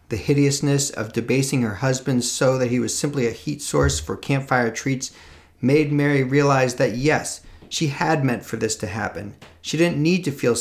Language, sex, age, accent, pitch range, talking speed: English, male, 40-59, American, 110-140 Hz, 190 wpm